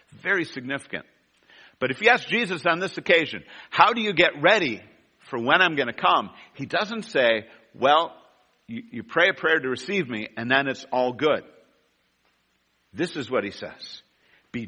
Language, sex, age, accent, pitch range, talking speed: English, male, 50-69, American, 135-175 Hz, 180 wpm